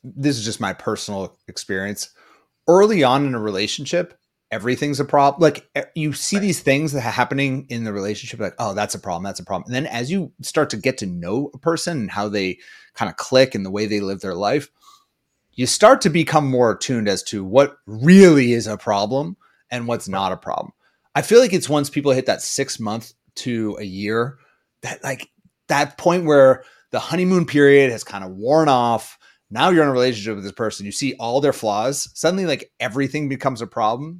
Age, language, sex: 30-49, English, male